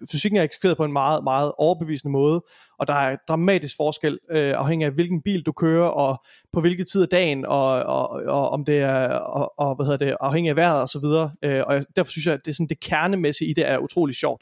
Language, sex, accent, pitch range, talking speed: Danish, male, native, 140-170 Hz, 195 wpm